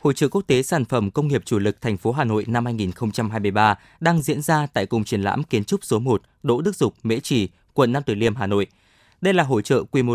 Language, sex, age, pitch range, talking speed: Vietnamese, male, 20-39, 110-155 Hz, 260 wpm